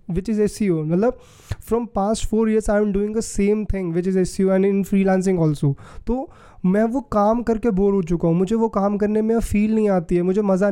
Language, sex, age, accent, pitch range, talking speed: Hindi, male, 20-39, native, 185-220 Hz, 250 wpm